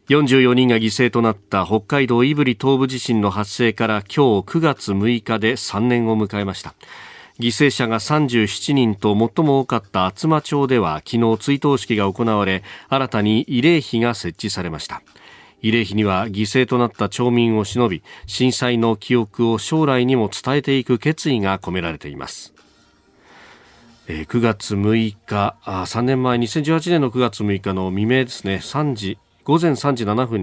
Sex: male